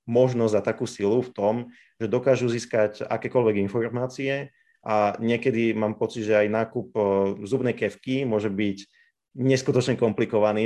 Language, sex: Slovak, male